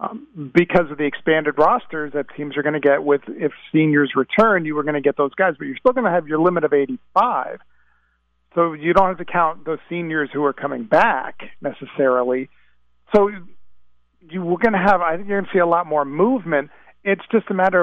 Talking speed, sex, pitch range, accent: 220 wpm, male, 135-175 Hz, American